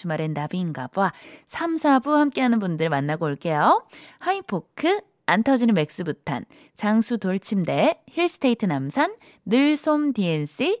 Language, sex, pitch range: Korean, female, 175-285 Hz